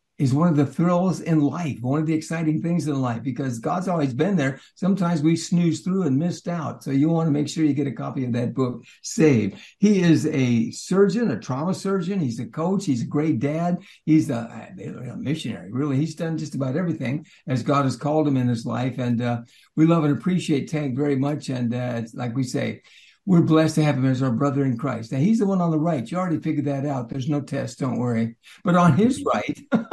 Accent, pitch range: American, 140-185 Hz